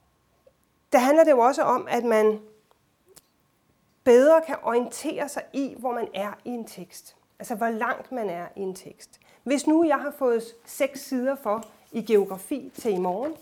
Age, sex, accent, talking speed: 30-49, female, native, 180 wpm